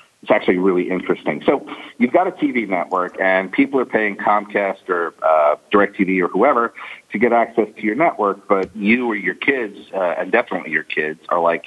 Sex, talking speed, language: male, 195 wpm, English